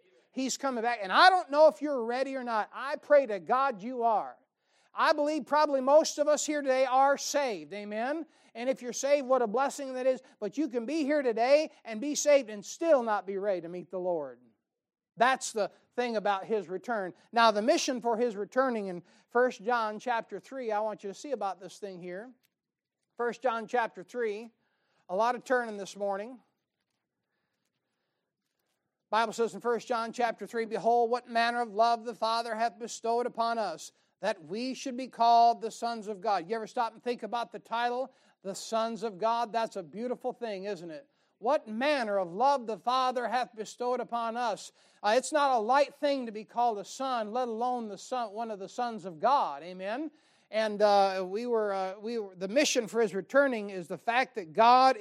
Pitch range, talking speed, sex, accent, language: 210-260 Hz, 205 wpm, male, American, English